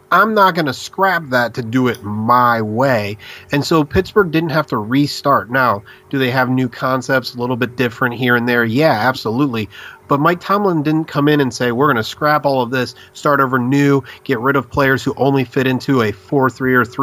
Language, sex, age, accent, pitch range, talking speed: English, male, 30-49, American, 120-145 Hz, 220 wpm